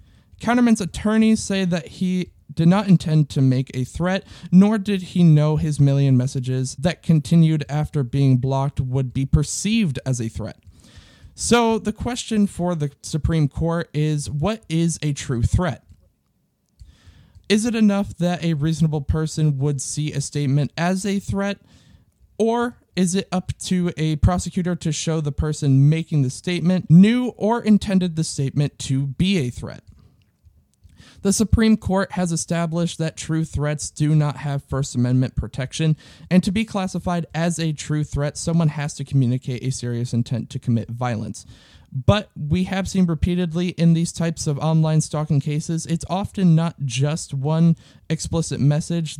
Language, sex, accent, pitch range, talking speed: English, male, American, 140-180 Hz, 160 wpm